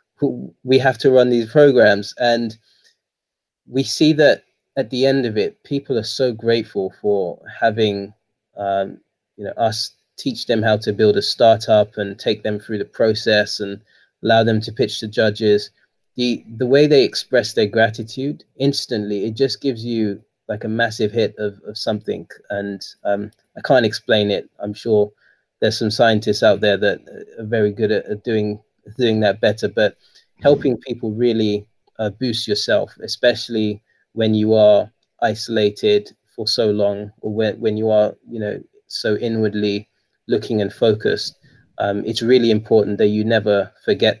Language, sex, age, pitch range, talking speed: English, male, 20-39, 105-120 Hz, 165 wpm